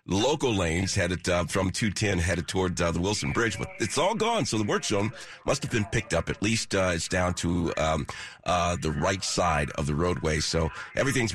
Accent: American